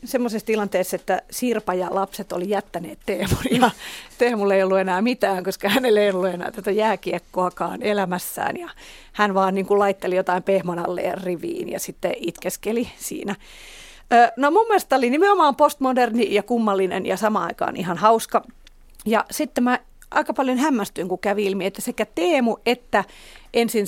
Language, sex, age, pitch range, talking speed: Finnish, female, 40-59, 190-240 Hz, 160 wpm